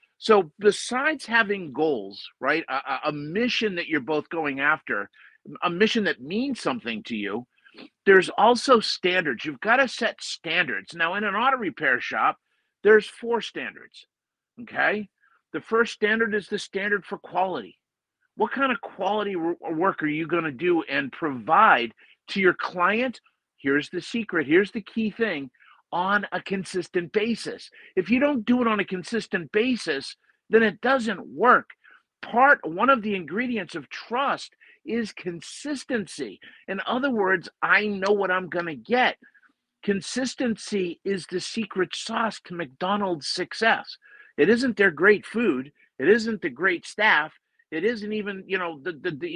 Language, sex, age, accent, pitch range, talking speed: English, male, 50-69, American, 180-235 Hz, 155 wpm